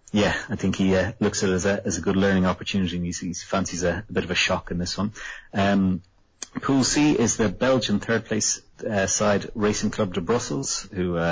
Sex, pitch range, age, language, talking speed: male, 90-100 Hz, 30-49, English, 225 wpm